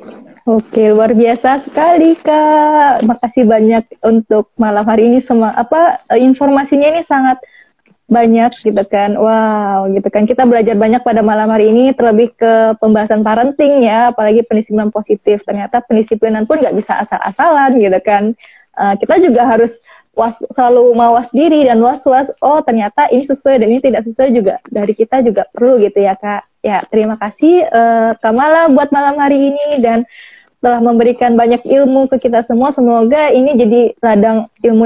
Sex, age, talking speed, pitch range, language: female, 20-39, 160 wpm, 220-275 Hz, Indonesian